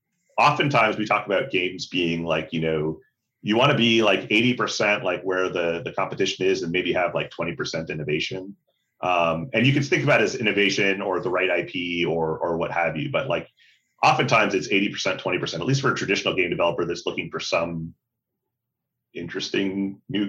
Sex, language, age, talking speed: male, English, 30-49, 190 wpm